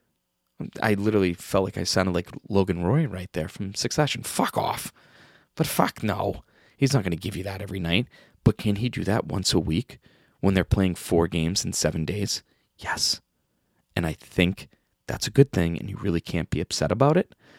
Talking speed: 200 wpm